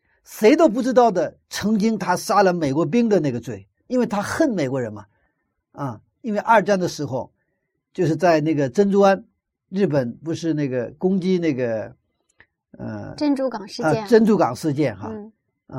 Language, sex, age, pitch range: Chinese, male, 50-69, 135-200 Hz